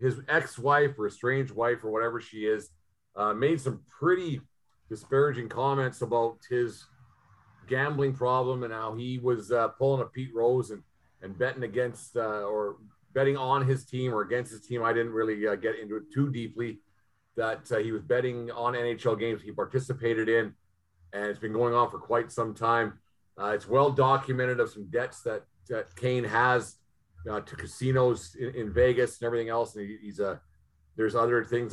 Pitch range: 110-130 Hz